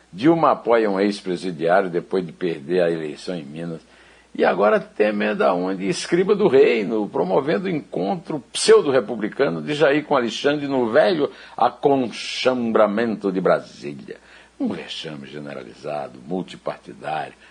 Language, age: Portuguese, 60-79